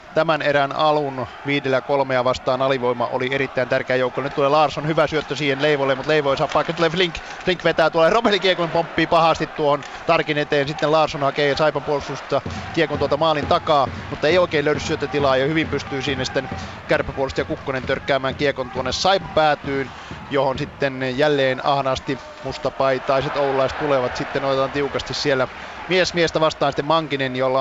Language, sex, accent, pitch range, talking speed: Finnish, male, native, 130-150 Hz, 165 wpm